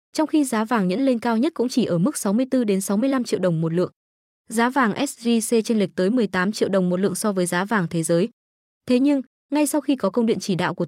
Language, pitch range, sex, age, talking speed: Vietnamese, 195-250 Hz, female, 20-39, 250 wpm